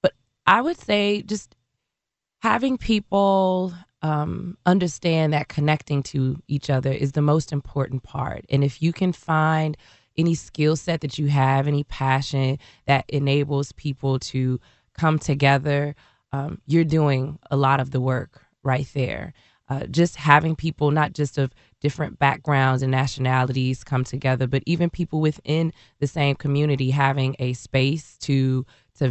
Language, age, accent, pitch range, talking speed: English, 20-39, American, 130-150 Hz, 150 wpm